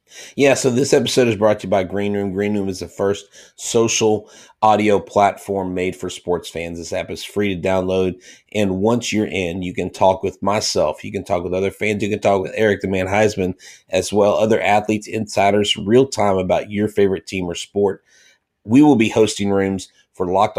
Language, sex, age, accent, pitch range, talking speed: English, male, 30-49, American, 95-110 Hz, 210 wpm